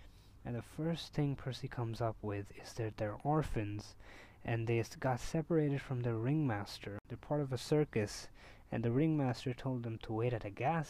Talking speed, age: 185 wpm, 20-39